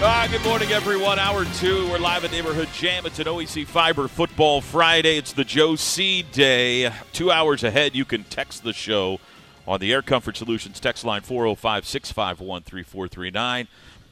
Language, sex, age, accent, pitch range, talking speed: English, male, 40-59, American, 110-155 Hz, 165 wpm